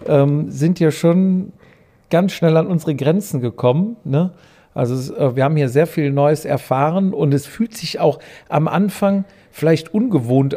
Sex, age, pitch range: male, 50-69, 140-170 Hz